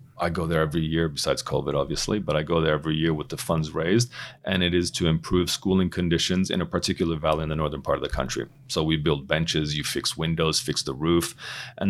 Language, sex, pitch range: English, male, 80-105 Hz